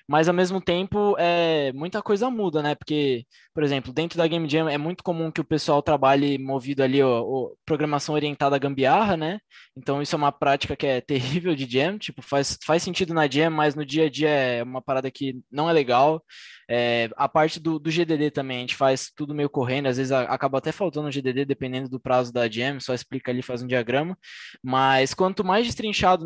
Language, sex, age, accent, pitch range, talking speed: Portuguese, male, 10-29, Brazilian, 140-180 Hz, 215 wpm